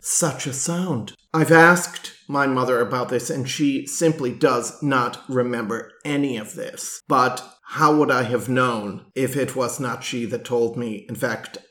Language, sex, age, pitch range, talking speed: English, male, 40-59, 120-160 Hz, 175 wpm